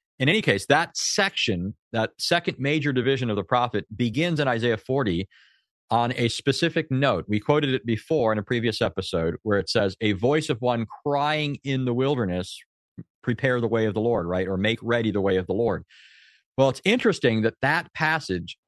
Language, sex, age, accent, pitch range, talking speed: English, male, 40-59, American, 105-135 Hz, 195 wpm